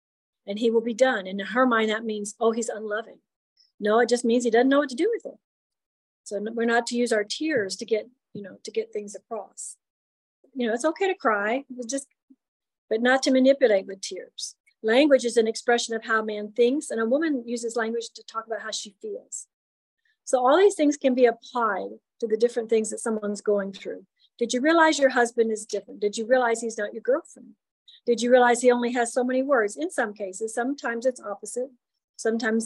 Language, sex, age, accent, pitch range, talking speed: English, female, 40-59, American, 220-255 Hz, 220 wpm